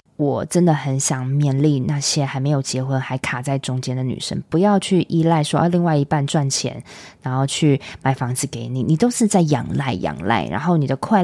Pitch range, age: 140-210 Hz, 20-39